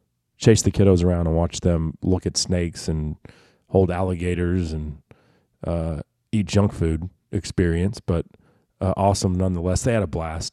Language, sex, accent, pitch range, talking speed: English, male, American, 85-105 Hz, 155 wpm